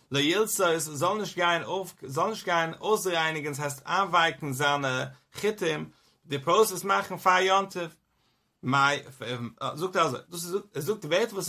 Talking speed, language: 110 wpm, English